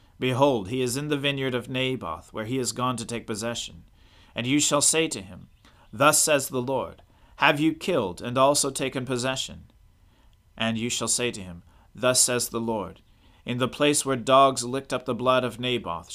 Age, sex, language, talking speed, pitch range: 40-59, male, English, 195 wpm, 100-135 Hz